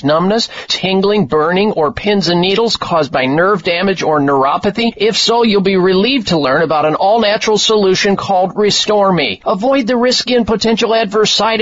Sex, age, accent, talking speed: male, 50-69, American, 170 wpm